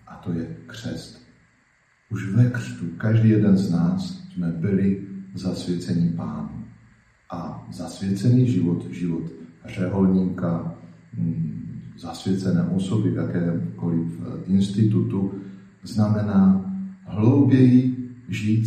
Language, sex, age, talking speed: Slovak, male, 50-69, 90 wpm